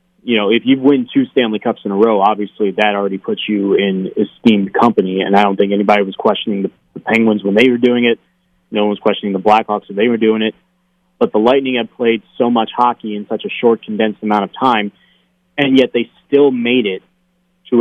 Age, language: 30-49, English